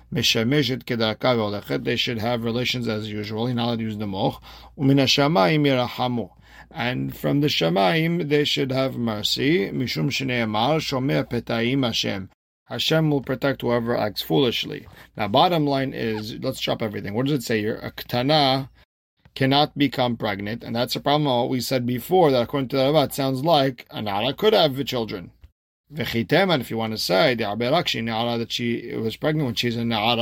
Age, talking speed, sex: 40-59, 140 wpm, male